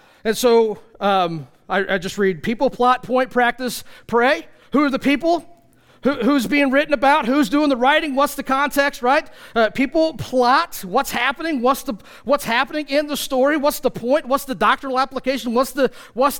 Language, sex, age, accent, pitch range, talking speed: English, male, 40-59, American, 200-265 Hz, 185 wpm